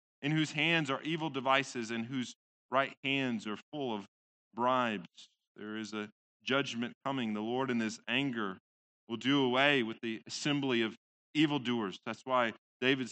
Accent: American